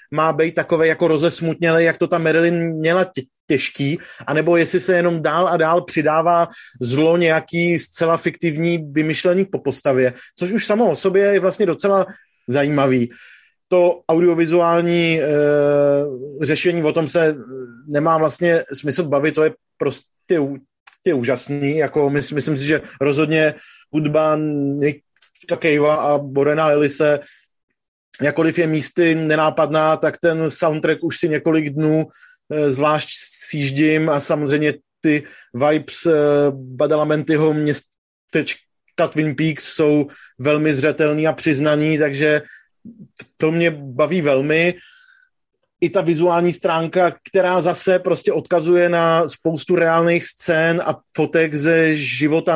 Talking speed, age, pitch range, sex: 125 wpm, 30-49, 150-170 Hz, male